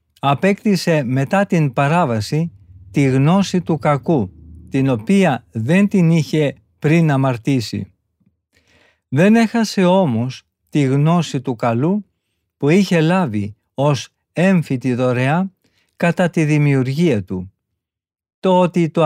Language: Greek